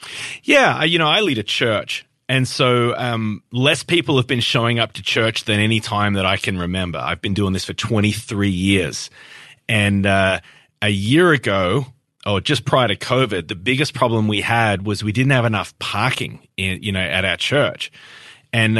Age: 30-49